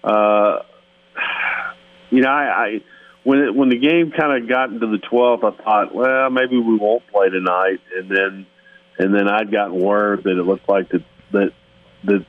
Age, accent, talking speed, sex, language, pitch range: 40-59, American, 185 wpm, male, English, 95-115 Hz